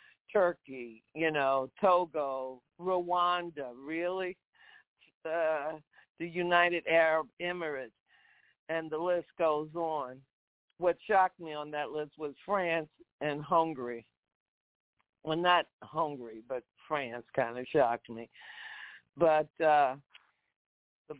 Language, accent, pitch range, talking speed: English, American, 145-175 Hz, 110 wpm